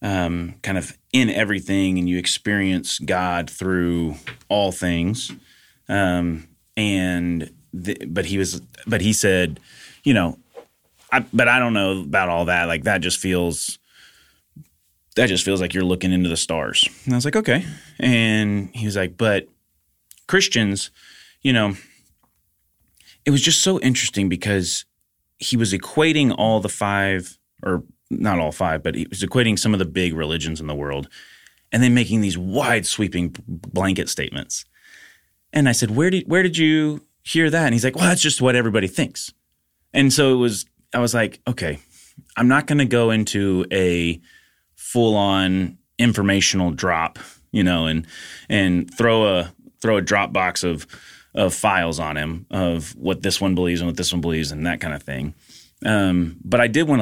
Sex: male